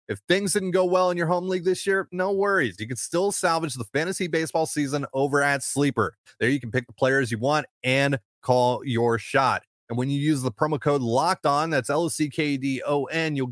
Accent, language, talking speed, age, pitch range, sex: American, English, 220 wpm, 30-49, 115-155 Hz, male